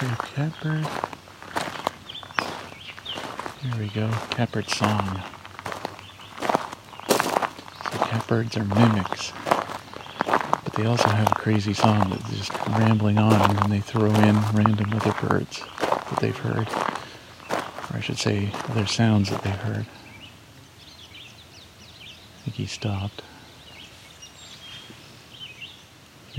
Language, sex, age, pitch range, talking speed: English, male, 40-59, 105-120 Hz, 100 wpm